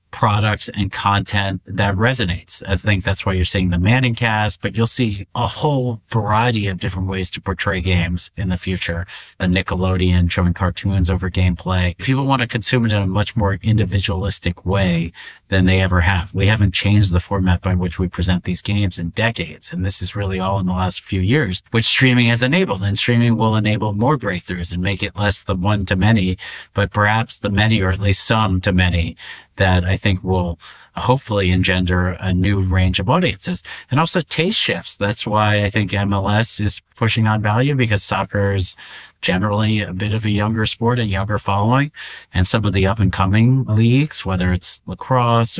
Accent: American